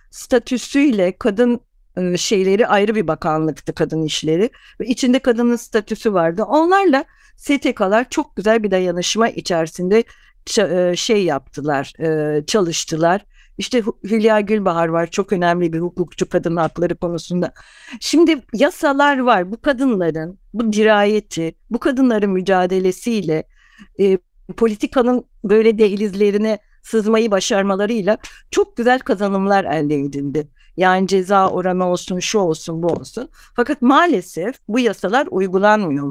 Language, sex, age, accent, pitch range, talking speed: Turkish, female, 60-79, native, 175-245 Hz, 115 wpm